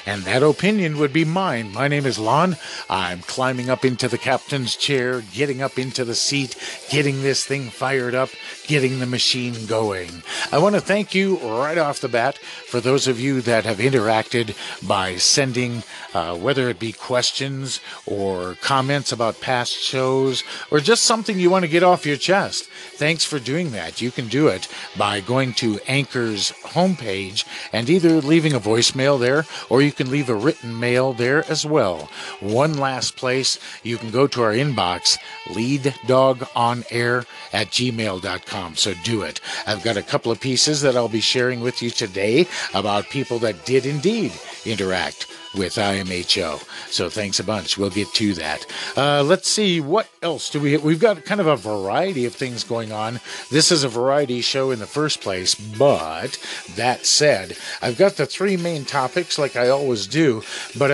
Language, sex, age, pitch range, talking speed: English, male, 50-69, 115-145 Hz, 180 wpm